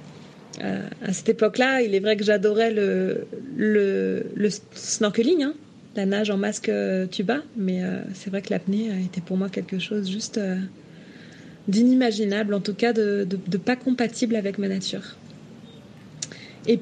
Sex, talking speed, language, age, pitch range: female, 160 wpm, French, 20-39, 195-230 Hz